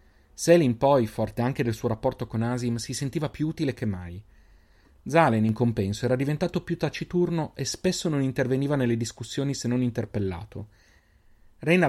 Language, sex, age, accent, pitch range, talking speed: Italian, male, 30-49, native, 105-135 Hz, 160 wpm